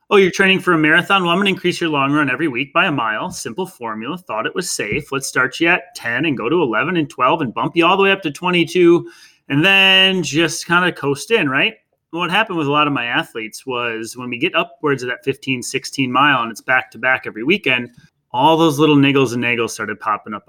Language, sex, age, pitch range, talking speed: English, male, 30-49, 130-170 Hz, 260 wpm